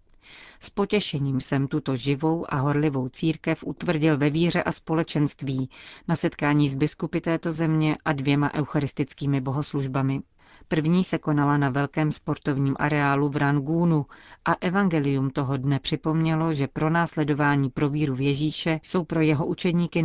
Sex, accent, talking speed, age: female, native, 145 wpm, 40-59